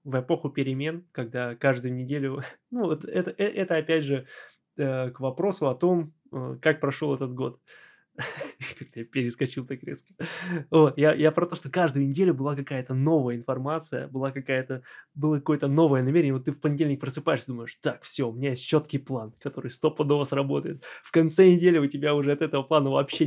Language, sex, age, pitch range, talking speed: Russian, male, 20-39, 130-160 Hz, 185 wpm